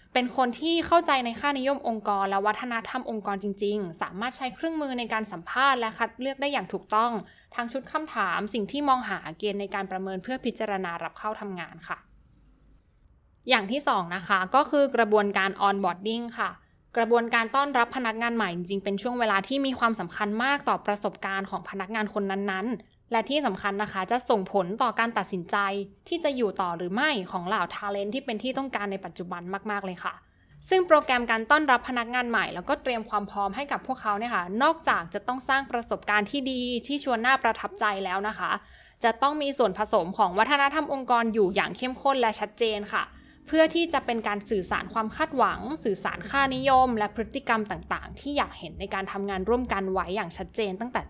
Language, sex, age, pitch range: Thai, female, 20-39, 195-255 Hz